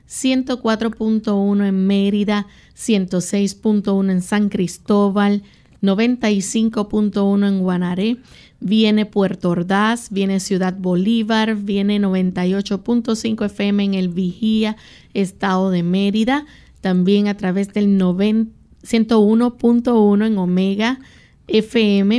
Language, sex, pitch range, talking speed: Spanish, female, 190-220 Hz, 85 wpm